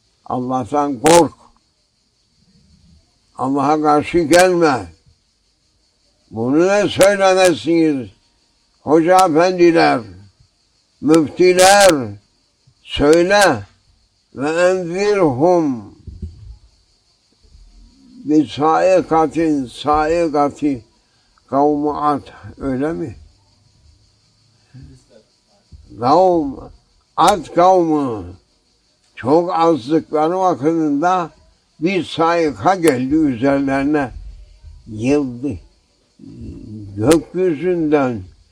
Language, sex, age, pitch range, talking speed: English, male, 60-79, 110-165 Hz, 50 wpm